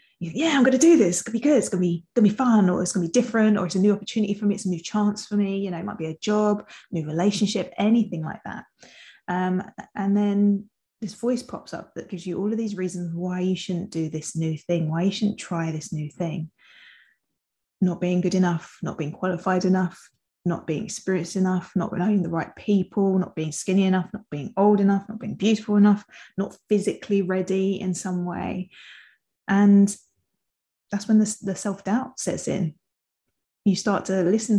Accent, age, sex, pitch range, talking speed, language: British, 20-39, female, 175-210 Hz, 215 wpm, English